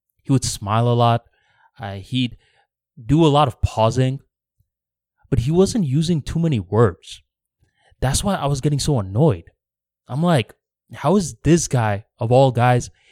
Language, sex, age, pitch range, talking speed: English, male, 20-39, 105-140 Hz, 160 wpm